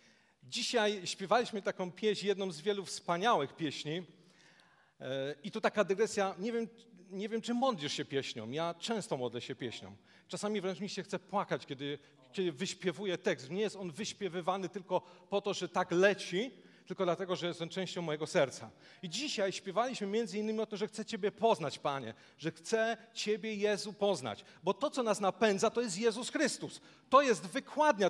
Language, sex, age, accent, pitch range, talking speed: Polish, male, 40-59, native, 175-220 Hz, 175 wpm